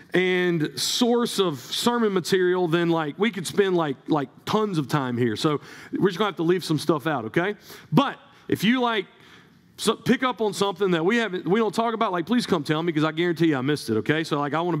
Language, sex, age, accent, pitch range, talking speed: English, male, 40-59, American, 160-225 Hz, 245 wpm